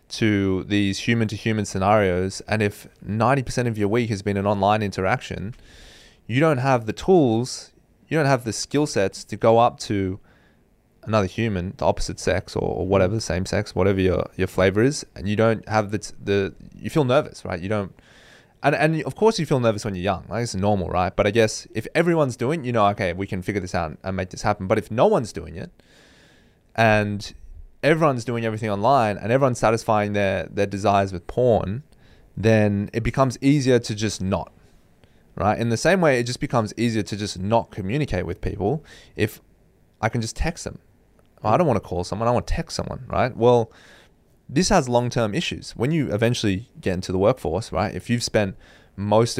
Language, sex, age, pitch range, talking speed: English, male, 20-39, 95-120 Hz, 205 wpm